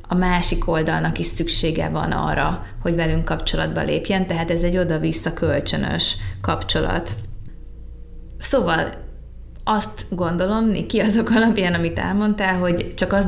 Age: 20-39